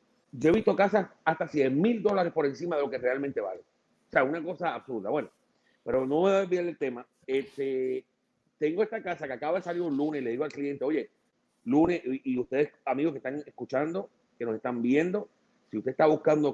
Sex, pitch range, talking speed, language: male, 130-175 Hz, 205 wpm, Spanish